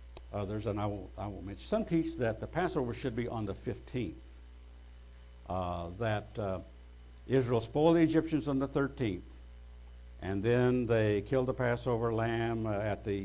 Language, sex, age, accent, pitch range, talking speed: English, male, 60-79, American, 90-120 Hz, 170 wpm